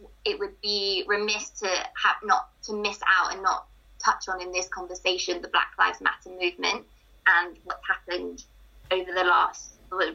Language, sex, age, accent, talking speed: English, female, 20-39, British, 170 wpm